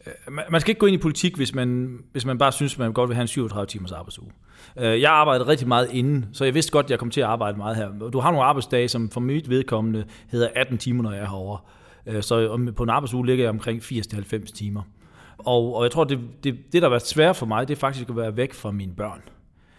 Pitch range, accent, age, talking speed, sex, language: 110-135 Hz, native, 40-59, 245 wpm, male, Danish